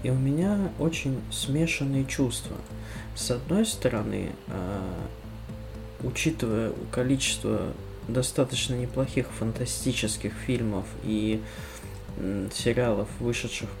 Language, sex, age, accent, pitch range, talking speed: Russian, male, 20-39, native, 110-135 Hz, 80 wpm